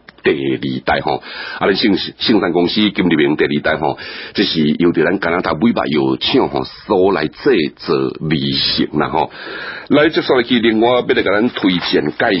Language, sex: Chinese, male